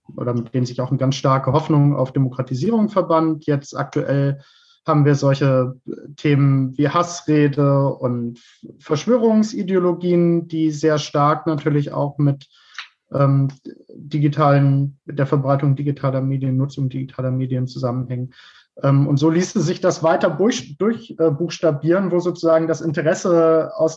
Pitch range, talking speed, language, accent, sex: 140-170 Hz, 130 wpm, German, German, male